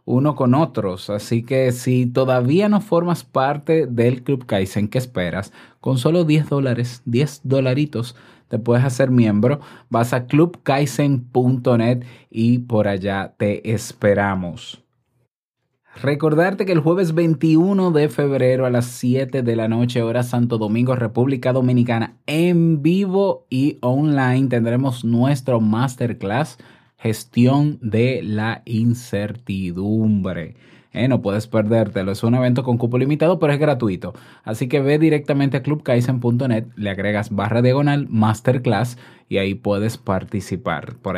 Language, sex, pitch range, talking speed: Spanish, male, 115-145 Hz, 135 wpm